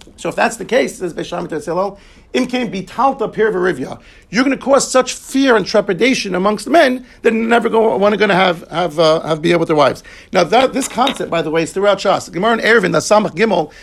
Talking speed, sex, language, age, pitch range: 230 wpm, male, English, 50-69, 175-230 Hz